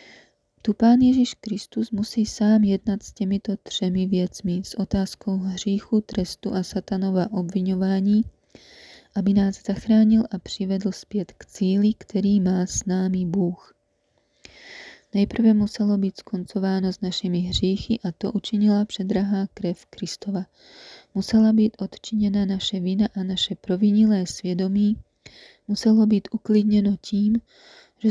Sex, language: female, Czech